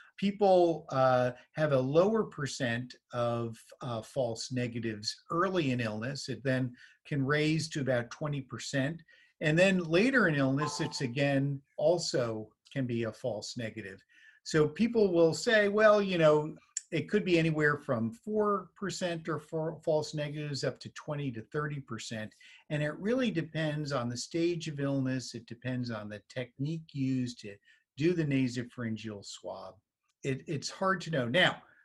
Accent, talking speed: American, 150 wpm